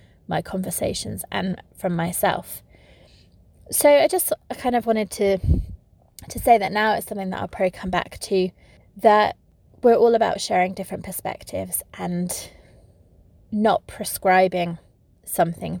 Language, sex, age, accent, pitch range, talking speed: English, female, 20-39, British, 180-225 Hz, 135 wpm